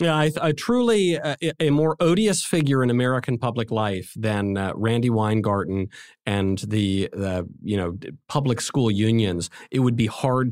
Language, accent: English, American